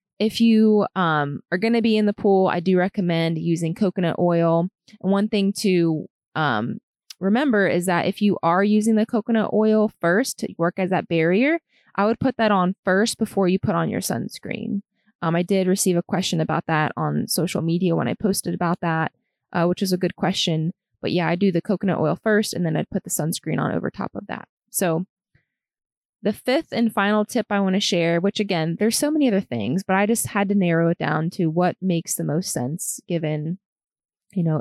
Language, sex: English, female